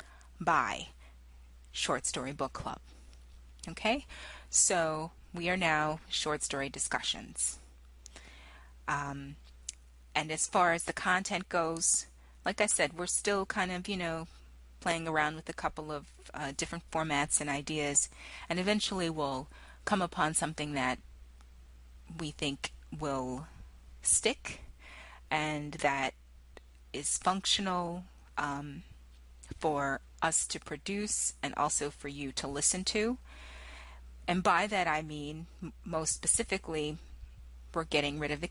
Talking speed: 125 wpm